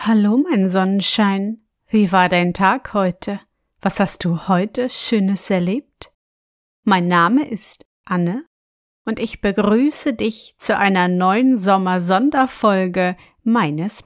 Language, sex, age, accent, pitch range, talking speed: German, female, 30-49, German, 180-225 Hz, 115 wpm